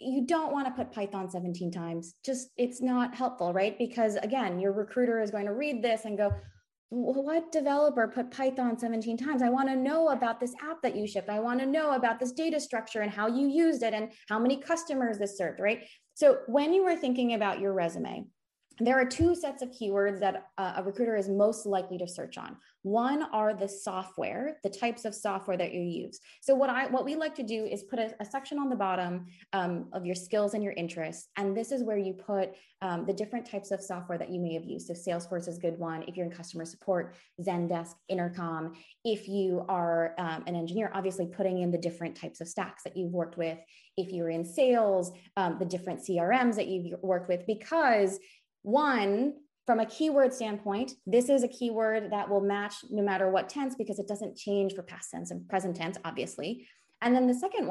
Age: 20-39